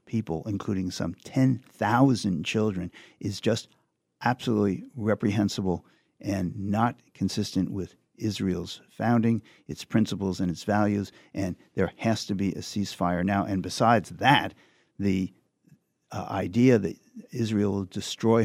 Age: 50-69